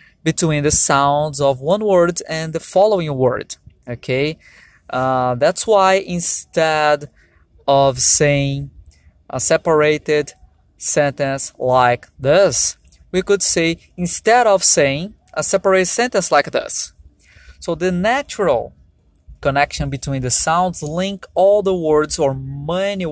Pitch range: 140-195 Hz